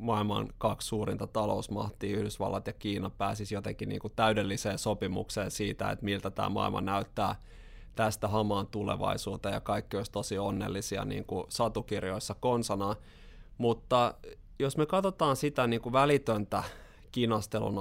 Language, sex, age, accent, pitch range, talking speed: Finnish, male, 20-39, native, 100-115 Hz, 125 wpm